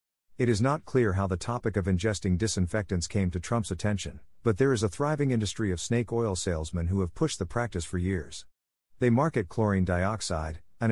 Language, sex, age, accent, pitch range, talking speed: English, male, 50-69, American, 90-115 Hz, 200 wpm